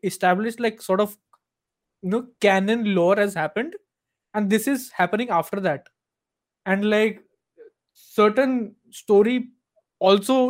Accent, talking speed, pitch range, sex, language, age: Indian, 120 wpm, 170-230 Hz, male, English, 20-39